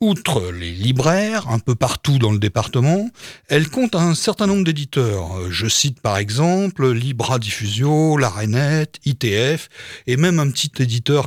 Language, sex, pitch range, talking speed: French, male, 120-165 Hz, 150 wpm